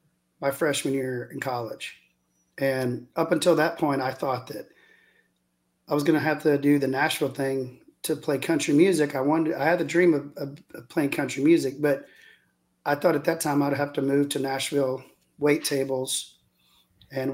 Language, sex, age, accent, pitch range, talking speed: English, male, 40-59, American, 125-145 Hz, 185 wpm